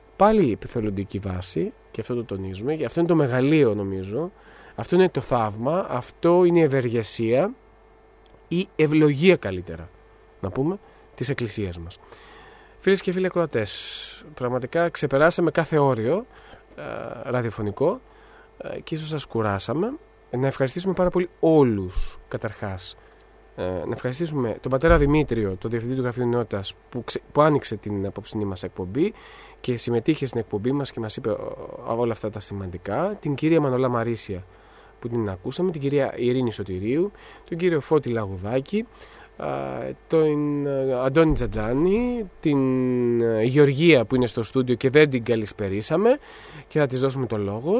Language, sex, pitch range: Greek, male, 110-155 Hz